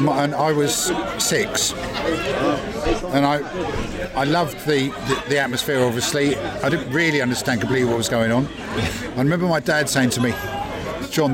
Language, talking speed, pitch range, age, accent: English, 165 wpm, 120-150 Hz, 50-69, British